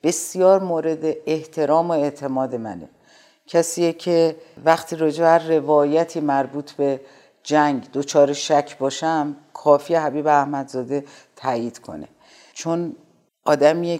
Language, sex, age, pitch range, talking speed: Persian, female, 50-69, 140-165 Hz, 105 wpm